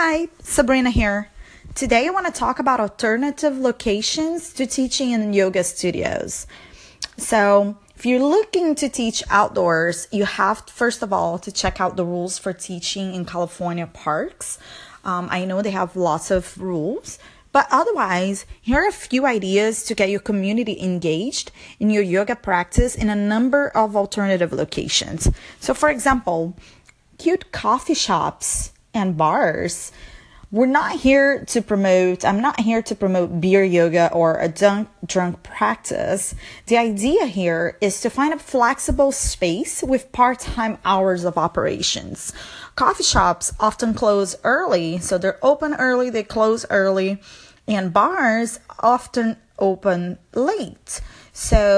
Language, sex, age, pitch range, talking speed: English, female, 20-39, 185-255 Hz, 145 wpm